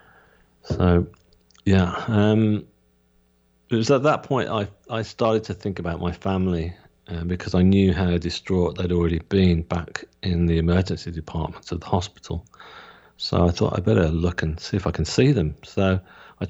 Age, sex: 40-59, male